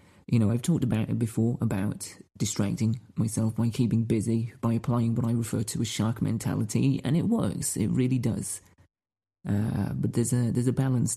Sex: male